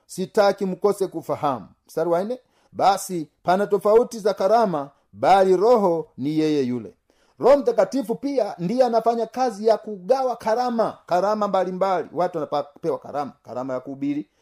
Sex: male